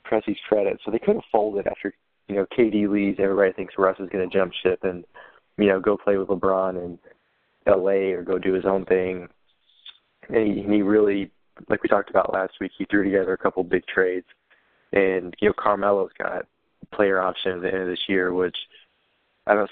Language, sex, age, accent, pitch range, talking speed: English, male, 20-39, American, 90-100 Hz, 220 wpm